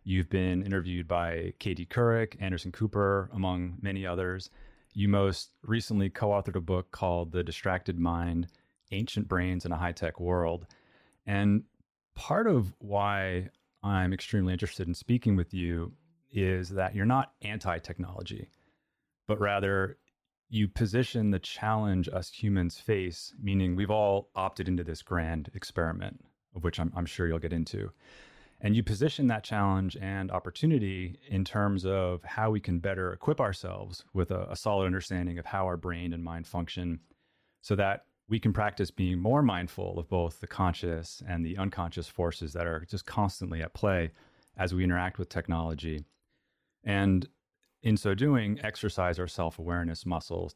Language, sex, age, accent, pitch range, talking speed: English, male, 30-49, American, 85-100 Hz, 155 wpm